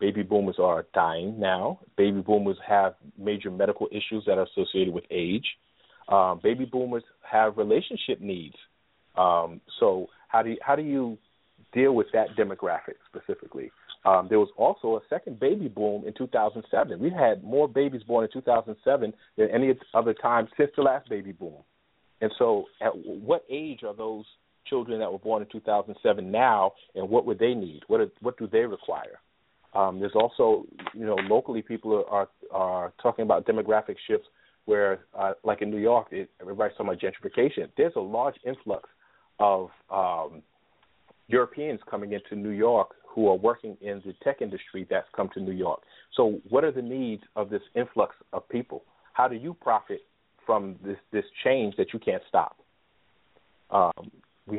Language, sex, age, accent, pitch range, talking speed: English, male, 40-59, American, 105-170 Hz, 175 wpm